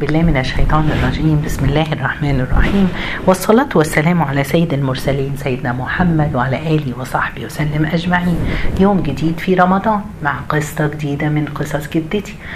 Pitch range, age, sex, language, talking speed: 135-175 Hz, 40-59, female, Arabic, 140 wpm